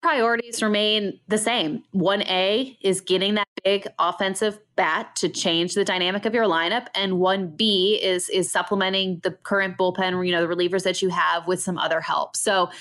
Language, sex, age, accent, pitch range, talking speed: English, female, 20-39, American, 180-215 Hz, 185 wpm